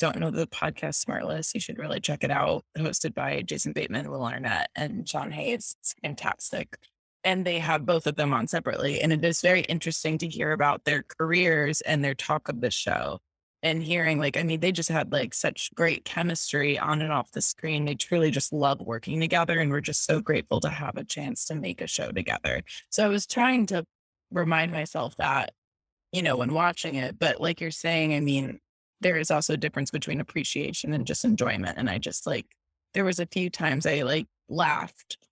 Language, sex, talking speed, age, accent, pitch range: English, female, 210 wpm, 20-39, American, 150-175 Hz